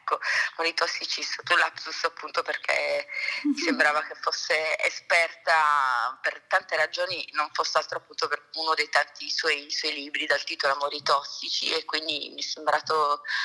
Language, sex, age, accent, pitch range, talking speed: Italian, female, 30-49, native, 145-165 Hz, 145 wpm